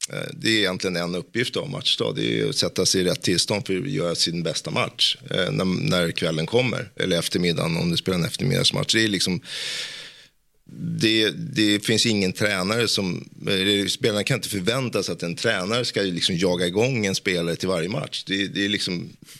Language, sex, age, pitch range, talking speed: English, male, 30-49, 85-105 Hz, 185 wpm